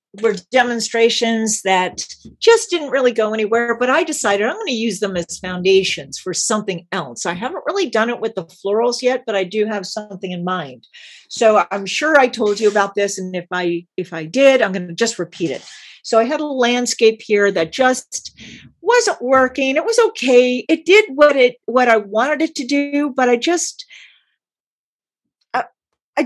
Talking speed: 190 wpm